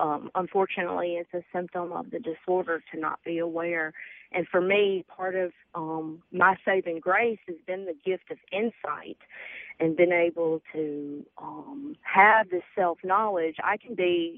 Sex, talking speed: female, 160 wpm